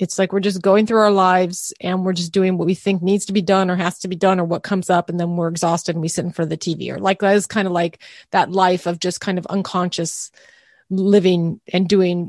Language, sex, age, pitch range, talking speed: English, female, 30-49, 175-210 Hz, 280 wpm